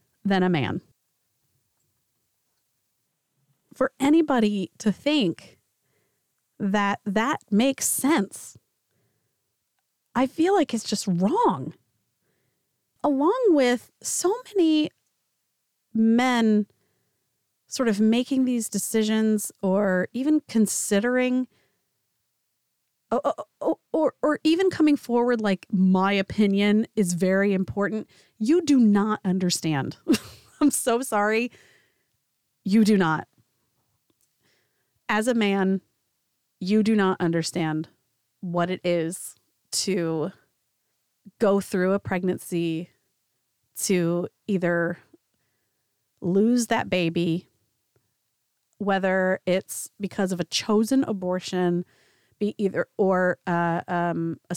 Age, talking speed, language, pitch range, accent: 30-49, 95 wpm, English, 170-225 Hz, American